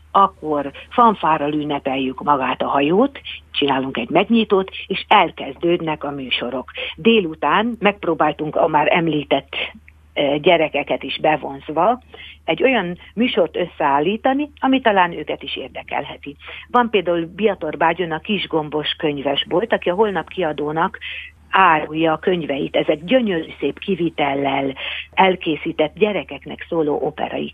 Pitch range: 150-205 Hz